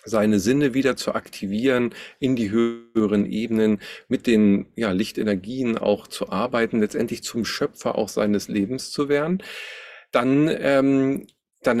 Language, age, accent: German, 40-59, German